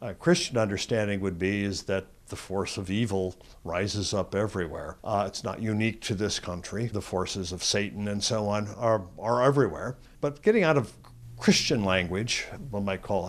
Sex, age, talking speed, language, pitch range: male, 60-79, 180 wpm, English, 95-120 Hz